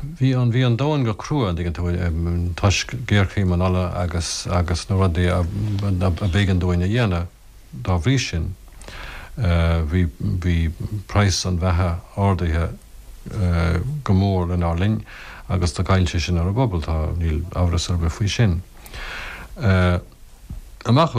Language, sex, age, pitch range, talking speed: English, male, 60-79, 85-100 Hz, 70 wpm